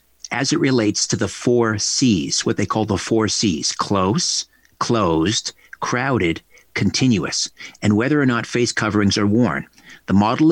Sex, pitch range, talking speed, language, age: male, 95-120 Hz, 155 wpm, English, 50-69